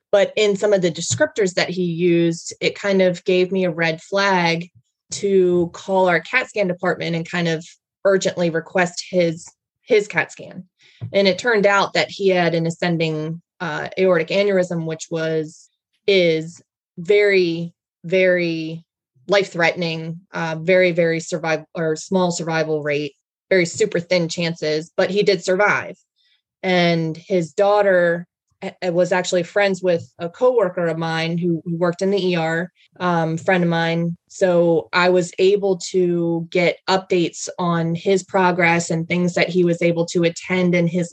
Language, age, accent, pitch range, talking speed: English, 20-39, American, 165-185 Hz, 160 wpm